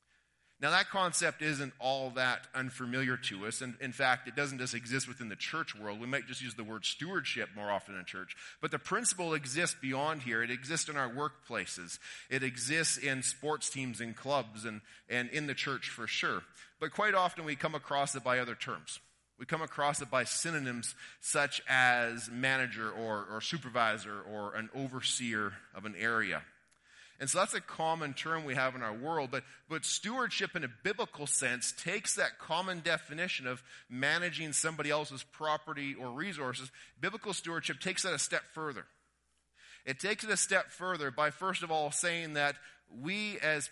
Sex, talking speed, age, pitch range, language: male, 185 wpm, 30-49, 125-155 Hz, English